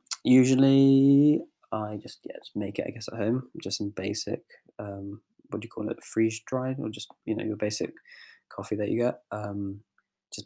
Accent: British